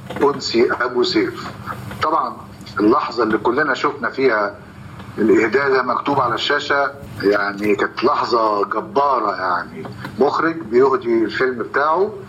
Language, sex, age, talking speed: Arabic, male, 50-69, 105 wpm